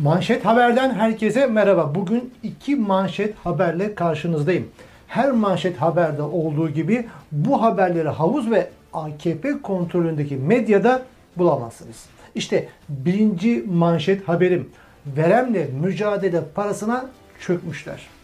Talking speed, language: 100 wpm, Turkish